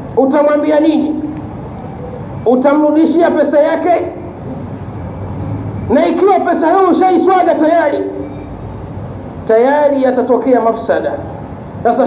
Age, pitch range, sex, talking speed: 50-69, 265-330 Hz, male, 75 wpm